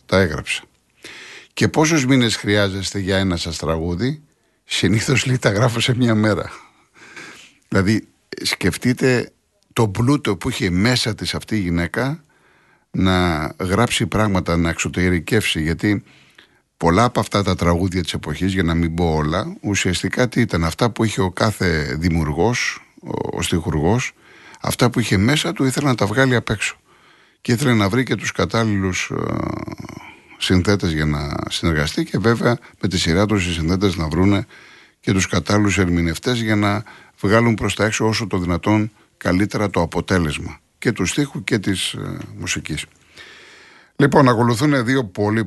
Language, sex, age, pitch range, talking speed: Greek, male, 50-69, 85-115 Hz, 150 wpm